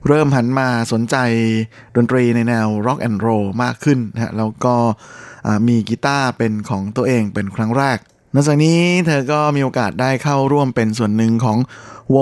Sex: male